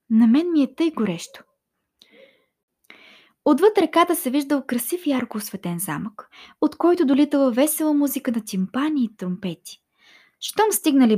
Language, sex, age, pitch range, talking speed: Bulgarian, female, 20-39, 200-280 Hz, 135 wpm